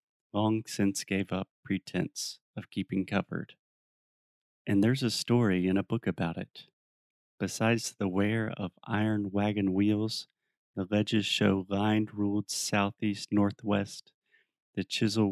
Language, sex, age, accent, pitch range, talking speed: Portuguese, male, 30-49, American, 100-110 Hz, 125 wpm